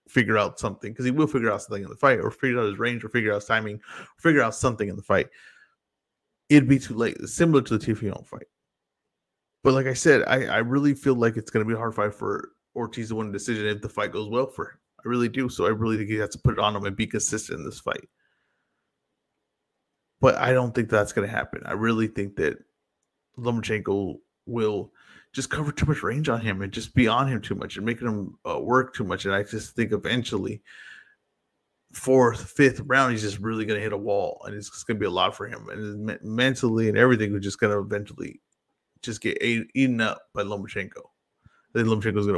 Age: 20-39